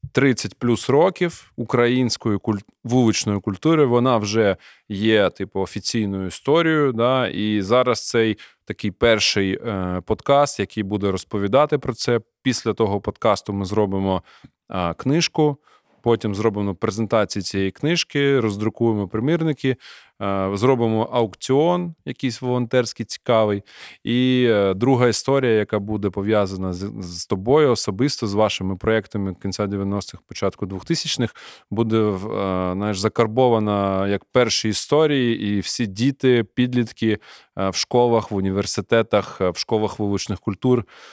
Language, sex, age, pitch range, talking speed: Ukrainian, male, 20-39, 100-125 Hz, 110 wpm